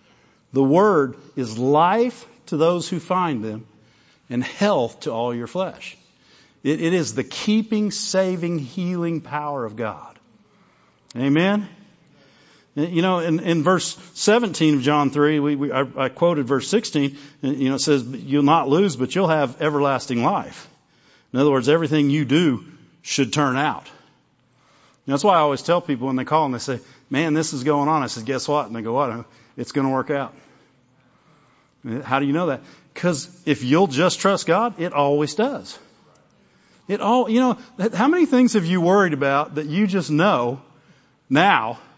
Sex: male